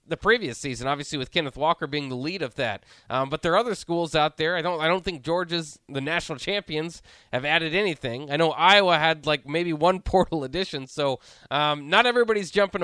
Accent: American